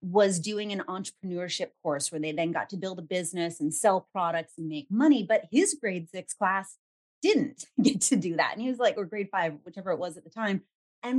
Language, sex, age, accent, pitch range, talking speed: English, female, 30-49, American, 170-220 Hz, 230 wpm